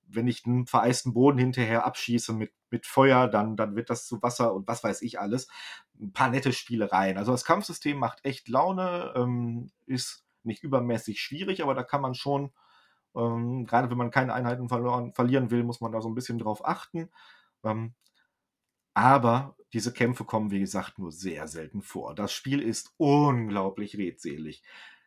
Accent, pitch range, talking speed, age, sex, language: German, 115-135 Hz, 170 wpm, 40-59, male, German